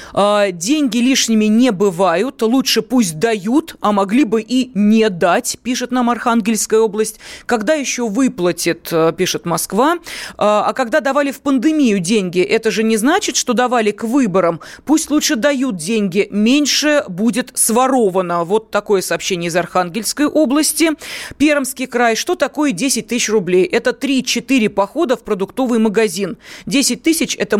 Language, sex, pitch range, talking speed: Russian, female, 200-265 Hz, 140 wpm